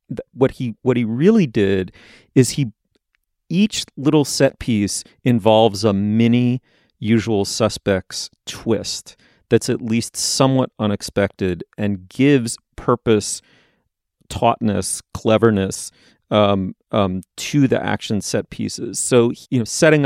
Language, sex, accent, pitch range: English, male, American, 100-130 Hz